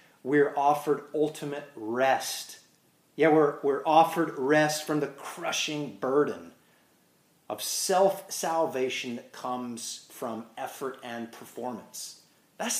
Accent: American